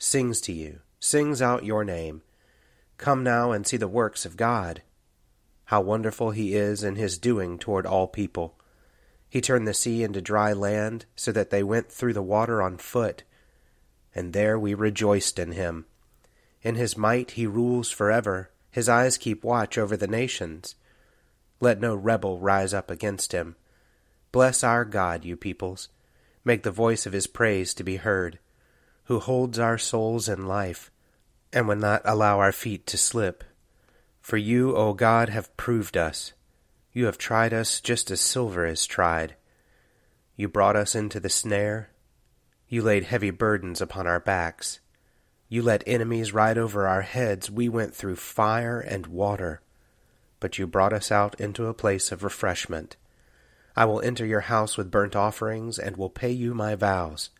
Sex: male